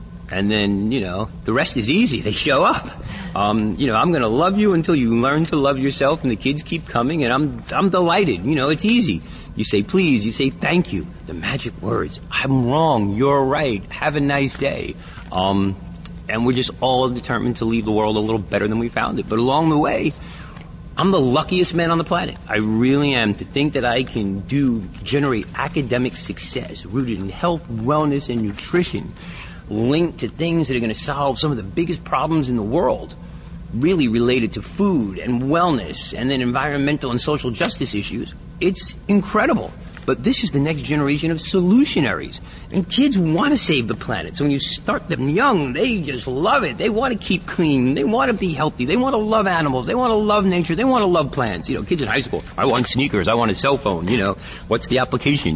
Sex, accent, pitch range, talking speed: male, American, 115-165 Hz, 220 wpm